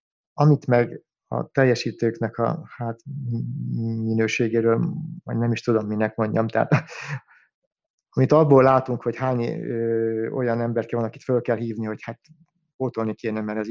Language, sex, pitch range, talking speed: Hungarian, male, 110-145 Hz, 145 wpm